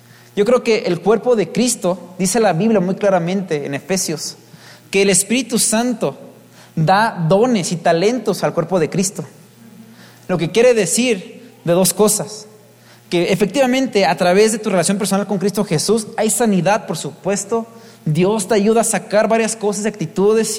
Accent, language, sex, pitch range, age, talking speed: Mexican, Spanish, male, 185-230 Hz, 30-49, 165 wpm